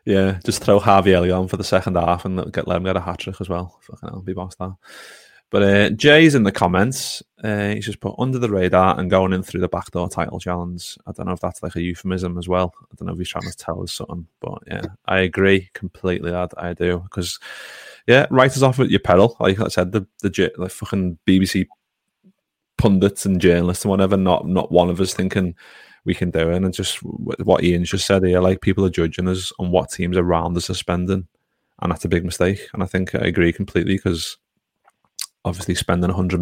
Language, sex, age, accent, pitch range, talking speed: English, male, 20-39, British, 90-95 Hz, 230 wpm